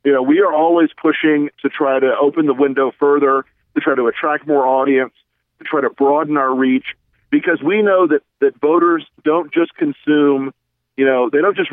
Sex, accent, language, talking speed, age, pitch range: male, American, English, 200 wpm, 50-69, 130-160 Hz